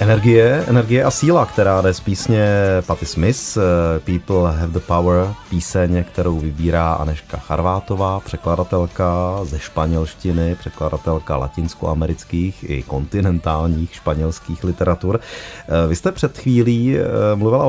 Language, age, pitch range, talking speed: Czech, 30-49, 85-110 Hz, 110 wpm